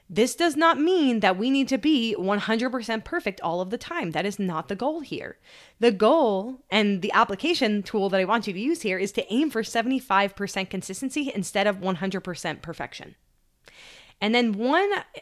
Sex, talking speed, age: female, 185 wpm, 20-39